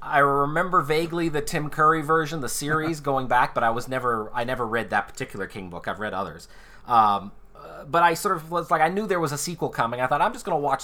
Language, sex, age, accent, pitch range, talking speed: English, male, 30-49, American, 115-145 Hz, 255 wpm